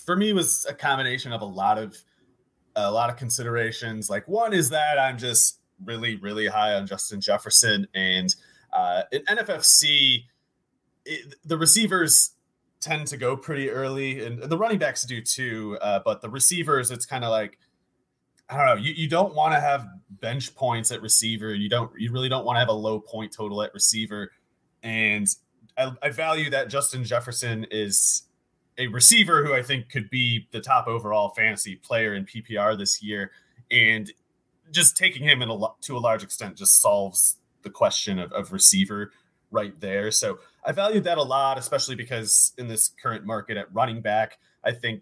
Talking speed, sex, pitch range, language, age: 185 wpm, male, 105-140 Hz, English, 30-49